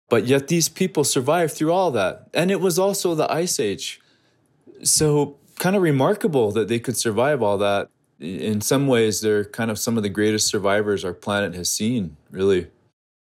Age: 20-39